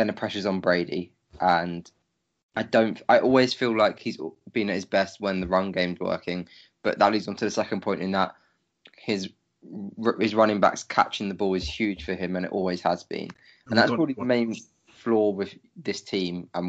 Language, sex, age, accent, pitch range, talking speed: English, male, 20-39, British, 90-105 Hz, 210 wpm